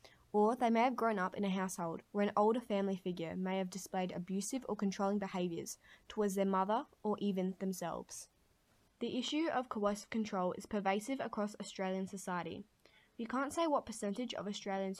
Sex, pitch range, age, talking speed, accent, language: female, 185-225 Hz, 10-29, 175 wpm, Australian, English